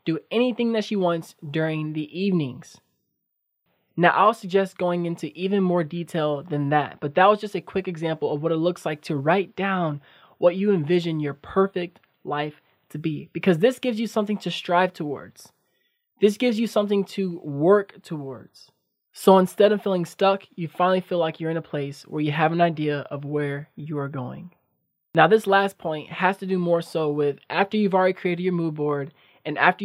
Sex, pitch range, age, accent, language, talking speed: male, 155-190 Hz, 20-39, American, English, 195 wpm